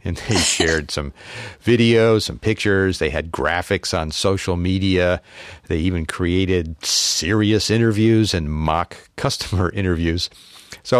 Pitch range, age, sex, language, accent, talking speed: 85-105 Hz, 50-69, male, English, American, 125 wpm